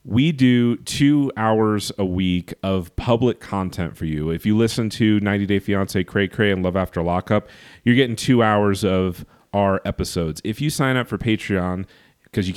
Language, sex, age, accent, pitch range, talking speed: English, male, 30-49, American, 95-115 Hz, 185 wpm